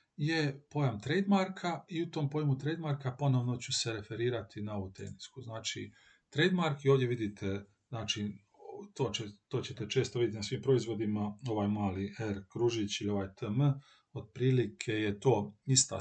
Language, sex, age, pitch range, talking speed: Croatian, male, 40-59, 110-140 Hz, 155 wpm